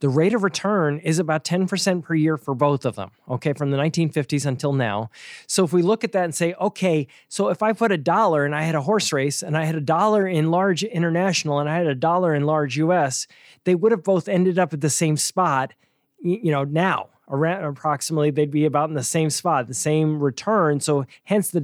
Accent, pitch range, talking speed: American, 150-190 Hz, 235 wpm